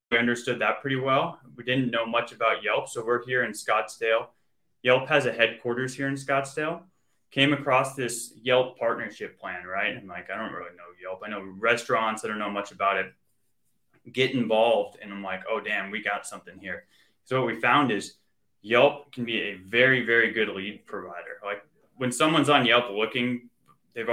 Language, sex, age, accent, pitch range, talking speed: English, male, 20-39, American, 110-135 Hz, 195 wpm